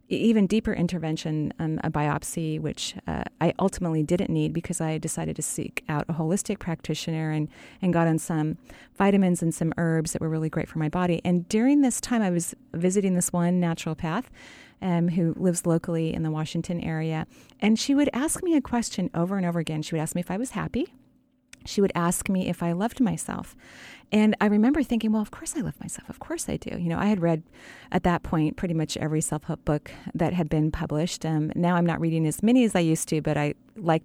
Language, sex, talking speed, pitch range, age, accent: English, female, 225 wpm, 160-200 Hz, 40-59, American